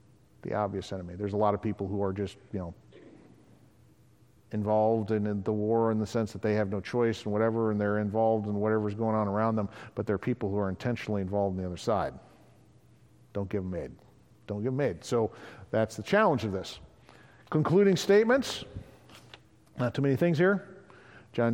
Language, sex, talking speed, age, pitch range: English, male, 200 wpm, 50-69, 105-125 Hz